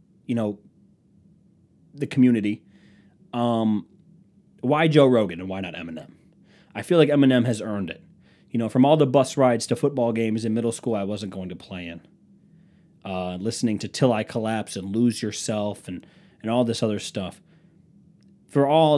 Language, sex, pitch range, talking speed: English, male, 105-155 Hz, 175 wpm